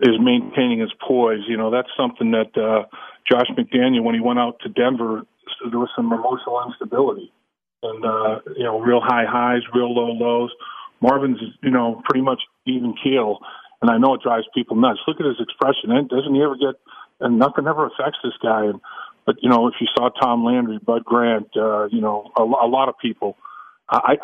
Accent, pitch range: American, 120-135 Hz